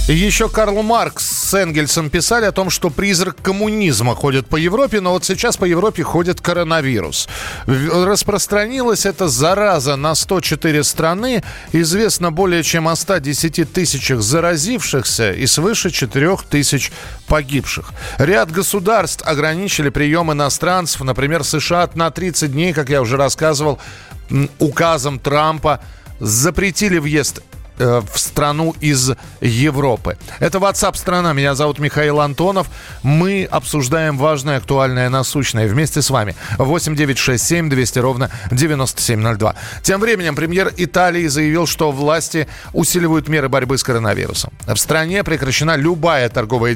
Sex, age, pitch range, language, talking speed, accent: male, 40-59, 130-175 Hz, Russian, 130 wpm, native